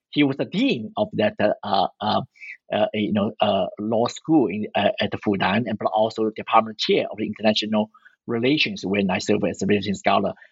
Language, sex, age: English, male, 50-69